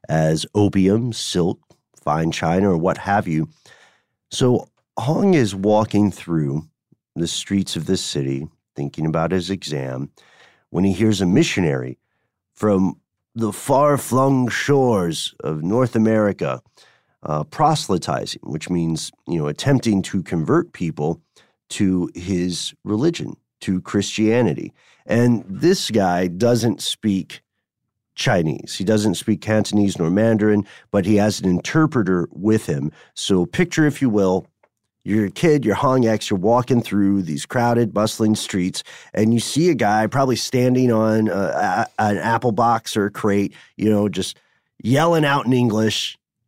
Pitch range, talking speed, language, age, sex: 95-120 Hz, 140 wpm, English, 40-59, male